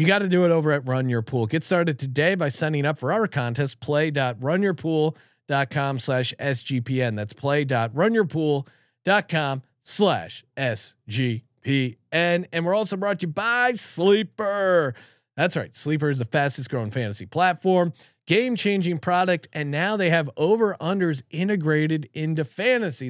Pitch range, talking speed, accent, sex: 135-175 Hz, 135 wpm, American, male